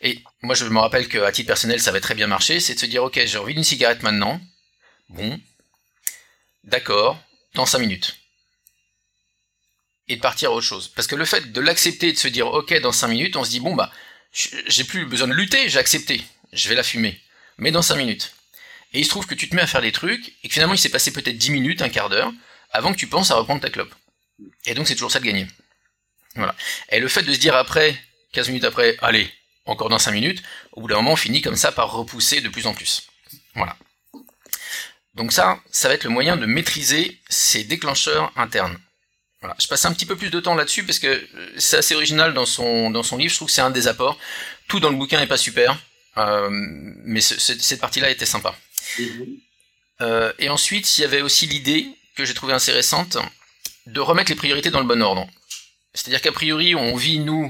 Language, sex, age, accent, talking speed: French, male, 30-49, French, 230 wpm